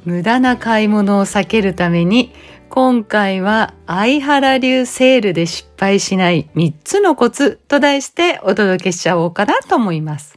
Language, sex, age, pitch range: Japanese, female, 40-59, 190-280 Hz